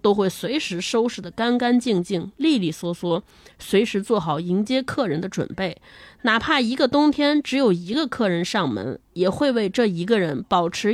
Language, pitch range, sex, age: Chinese, 190-265 Hz, female, 20-39